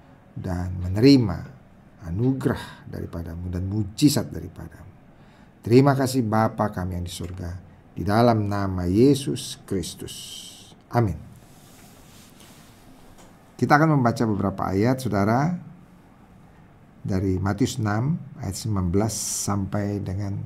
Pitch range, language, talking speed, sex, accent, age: 100-130 Hz, English, 95 wpm, male, Indonesian, 50-69